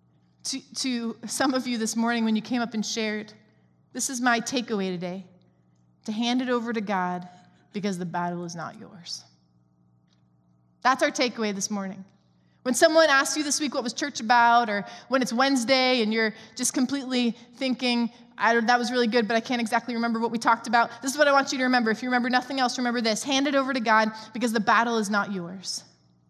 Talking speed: 215 wpm